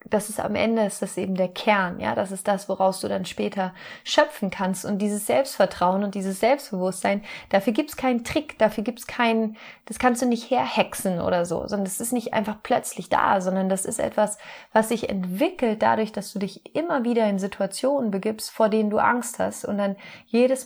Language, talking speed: German, 205 wpm